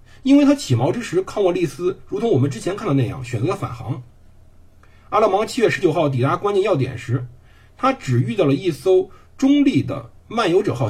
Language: Chinese